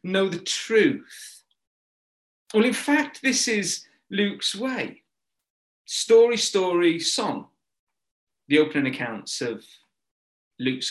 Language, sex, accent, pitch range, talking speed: English, male, British, 140-210 Hz, 100 wpm